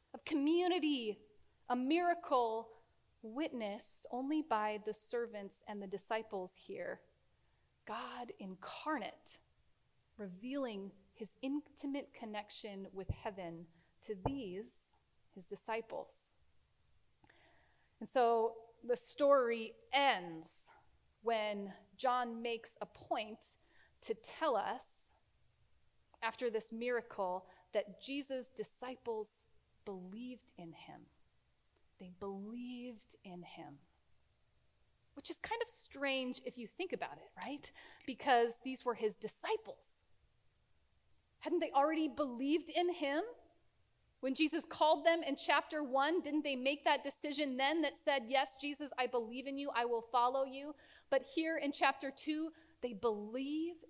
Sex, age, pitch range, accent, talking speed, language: female, 30-49, 215-290 Hz, American, 115 wpm, English